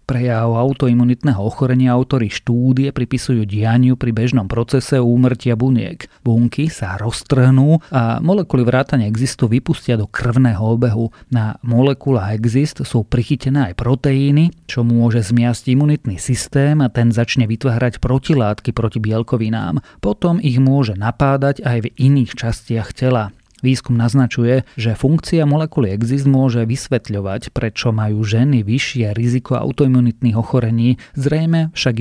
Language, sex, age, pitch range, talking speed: Slovak, male, 30-49, 115-135 Hz, 125 wpm